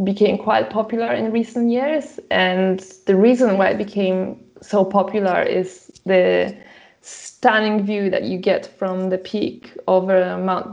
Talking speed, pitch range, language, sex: 145 wpm, 180-210 Hz, English, female